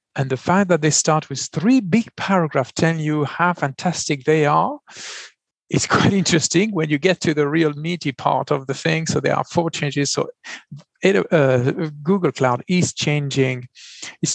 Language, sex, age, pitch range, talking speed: English, male, 50-69, 135-180 Hz, 175 wpm